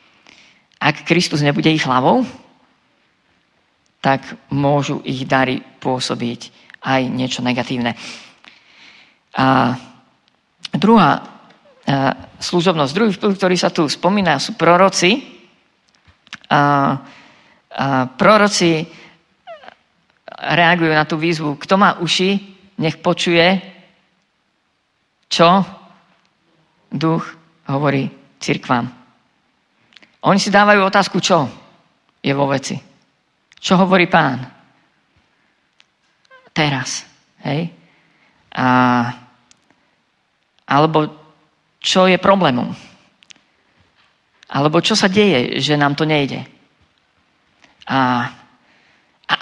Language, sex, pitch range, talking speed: Slovak, female, 140-190 Hz, 85 wpm